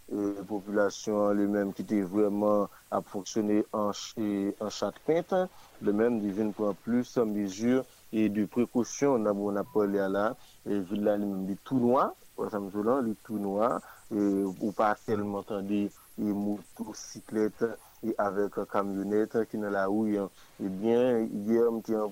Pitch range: 100-110 Hz